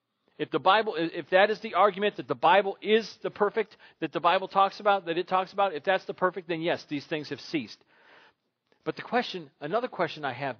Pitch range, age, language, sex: 165-205 Hz, 40-59, English, male